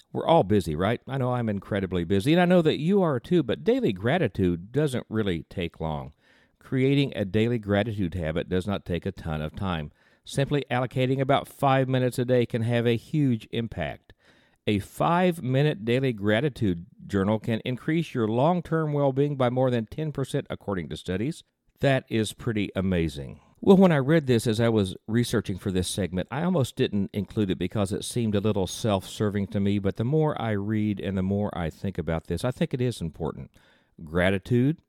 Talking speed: 195 wpm